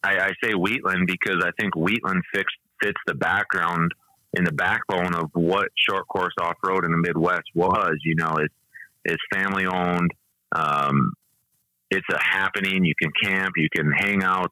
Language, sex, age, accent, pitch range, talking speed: English, male, 30-49, American, 80-95 Hz, 170 wpm